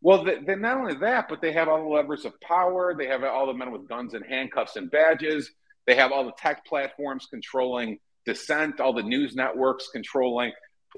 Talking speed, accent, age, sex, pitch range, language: 200 wpm, American, 50-69, male, 125-195 Hz, English